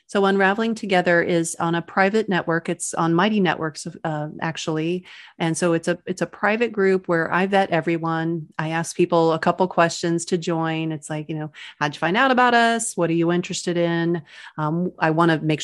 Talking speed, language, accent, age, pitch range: 205 wpm, English, American, 30-49, 165-185 Hz